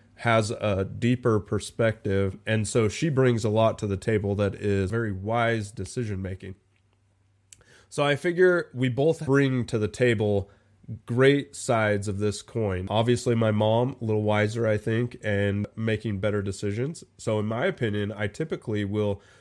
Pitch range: 105-125 Hz